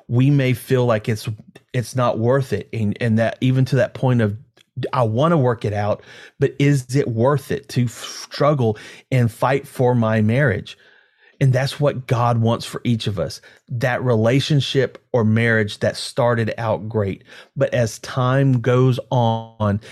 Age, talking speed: 30-49, 175 wpm